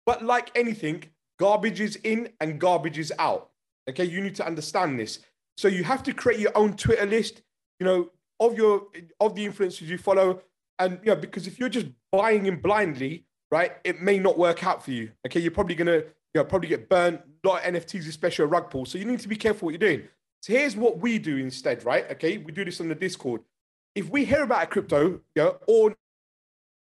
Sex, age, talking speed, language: male, 30-49, 225 wpm, English